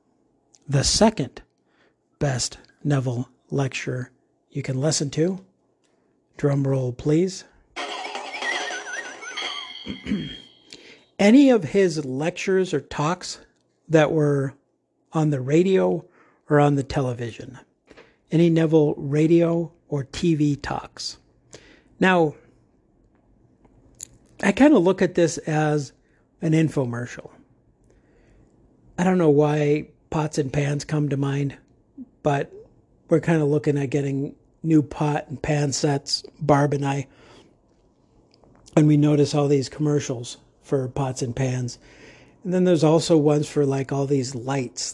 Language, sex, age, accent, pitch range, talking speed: English, male, 50-69, American, 135-155 Hz, 120 wpm